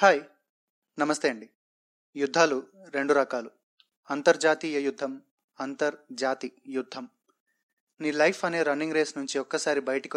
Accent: native